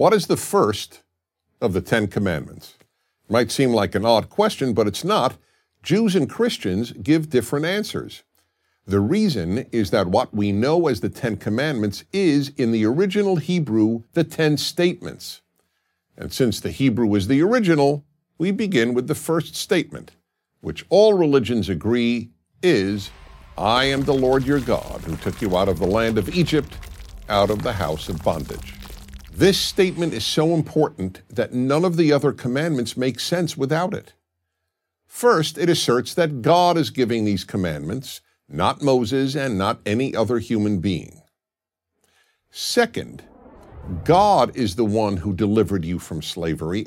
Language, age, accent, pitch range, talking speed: English, 50-69, American, 100-155 Hz, 160 wpm